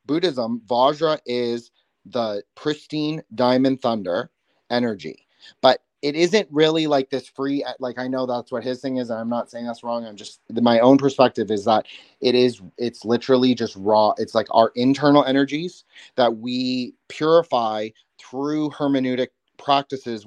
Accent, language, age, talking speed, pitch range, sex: American, English, 30-49, 155 wpm, 115-135 Hz, male